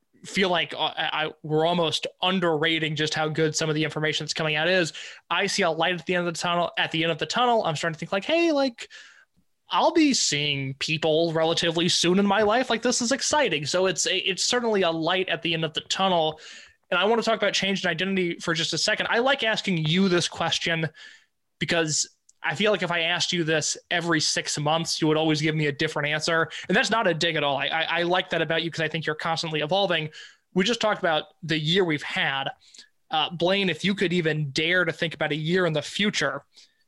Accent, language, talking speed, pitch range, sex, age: American, English, 240 wpm, 155-190 Hz, male, 20-39